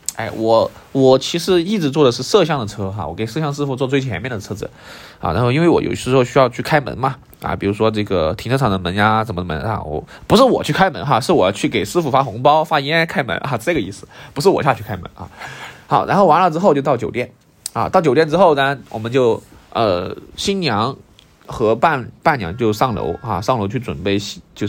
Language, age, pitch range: Chinese, 20-39, 105-145 Hz